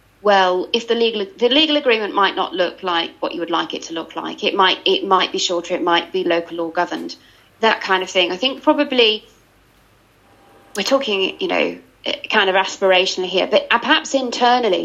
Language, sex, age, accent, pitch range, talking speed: English, female, 40-59, British, 190-250 Hz, 200 wpm